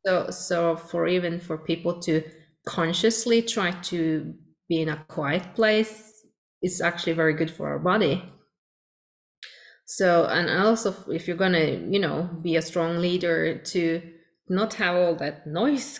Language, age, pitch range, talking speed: English, 20-39, 160-210 Hz, 155 wpm